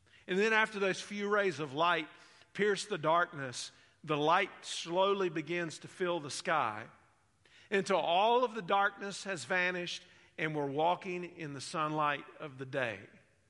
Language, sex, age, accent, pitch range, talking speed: English, male, 50-69, American, 145-175 Hz, 155 wpm